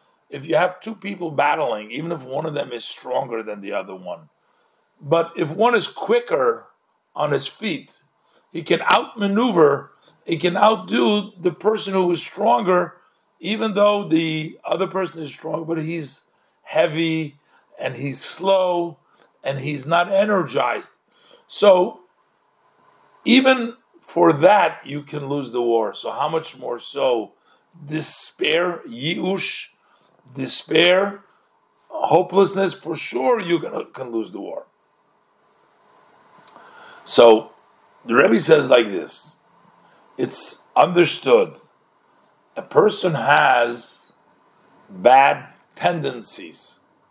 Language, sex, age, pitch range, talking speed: English, male, 50-69, 150-235 Hz, 115 wpm